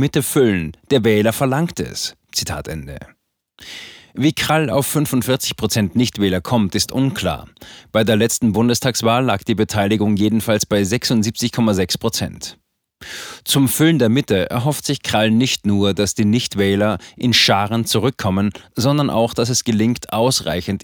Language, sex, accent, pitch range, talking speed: German, male, German, 105-125 Hz, 135 wpm